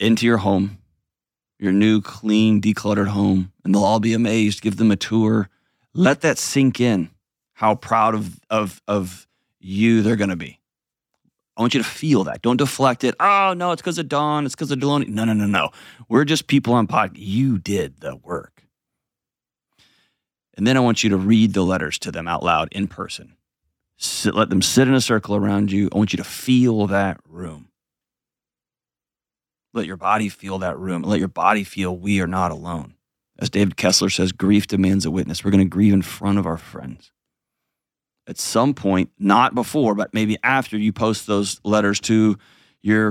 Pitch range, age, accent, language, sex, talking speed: 95-115 Hz, 30-49, American, English, male, 195 wpm